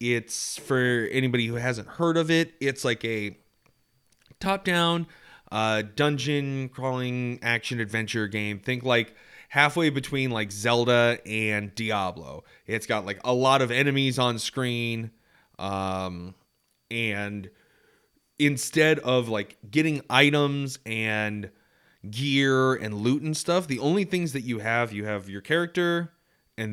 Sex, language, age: male, English, 30-49